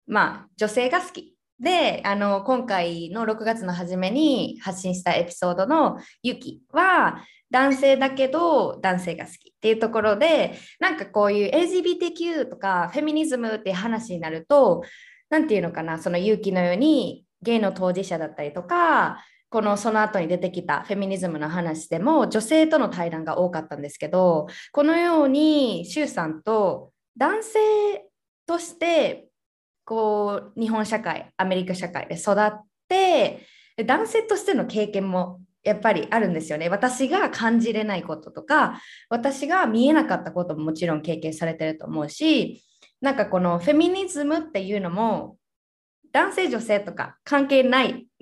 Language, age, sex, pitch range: Japanese, 20-39, female, 185-300 Hz